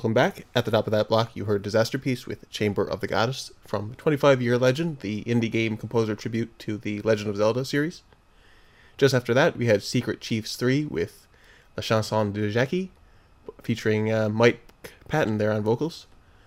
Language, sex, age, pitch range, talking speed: English, male, 20-39, 110-135 Hz, 185 wpm